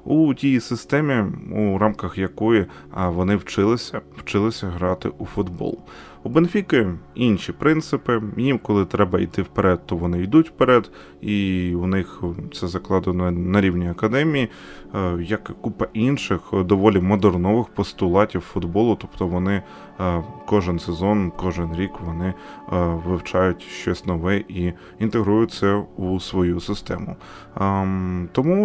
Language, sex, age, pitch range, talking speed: Ukrainian, male, 20-39, 90-115 Hz, 120 wpm